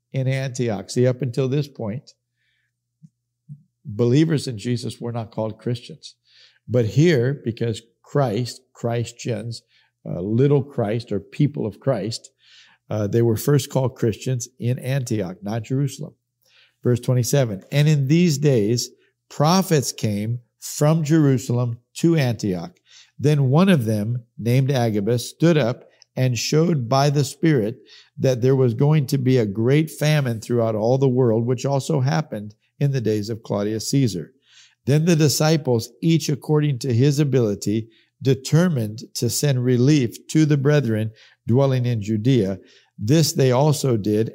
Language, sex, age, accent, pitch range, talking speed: English, male, 50-69, American, 115-145 Hz, 140 wpm